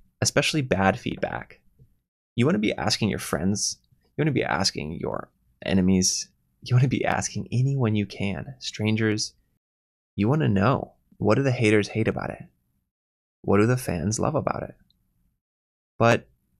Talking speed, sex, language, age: 165 wpm, male, English, 20-39